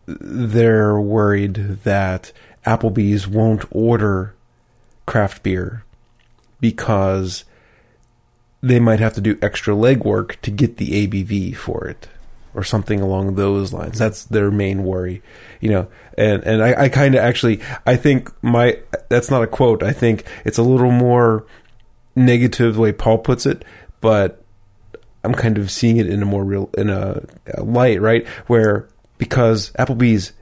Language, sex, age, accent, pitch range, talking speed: English, male, 30-49, American, 100-120 Hz, 150 wpm